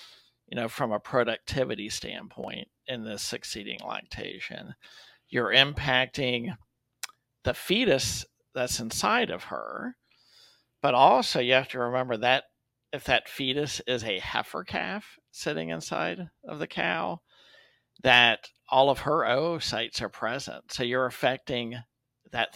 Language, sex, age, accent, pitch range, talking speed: English, male, 50-69, American, 115-135 Hz, 130 wpm